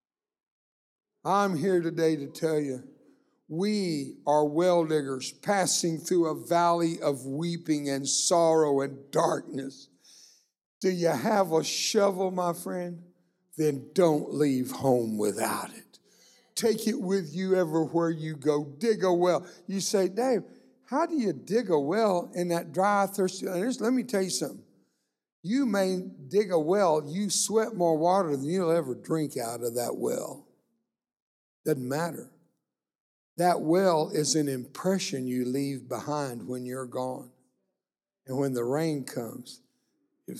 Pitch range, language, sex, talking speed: 145-195 Hz, English, male, 145 wpm